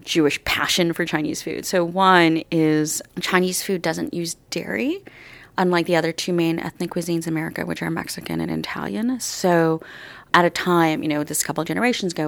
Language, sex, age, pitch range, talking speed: English, female, 30-49, 155-190 Hz, 185 wpm